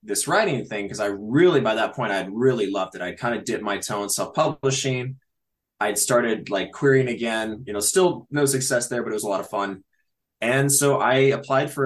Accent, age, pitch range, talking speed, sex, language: American, 20-39, 105-135 Hz, 225 wpm, male, English